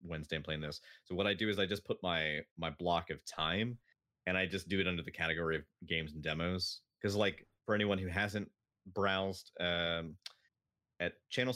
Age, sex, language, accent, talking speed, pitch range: 30-49, male, English, American, 200 wpm, 85-100 Hz